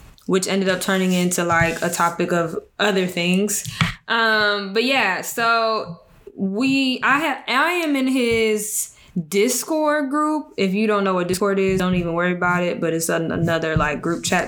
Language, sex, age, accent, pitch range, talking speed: English, female, 10-29, American, 180-220 Hz, 175 wpm